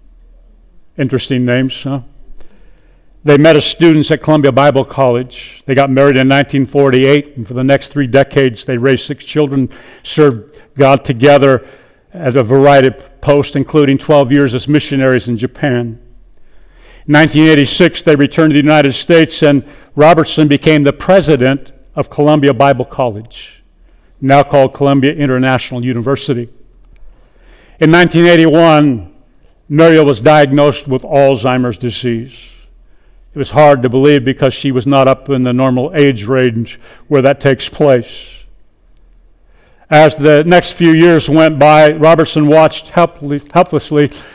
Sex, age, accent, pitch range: male, 50-69, American, 130-150 Hz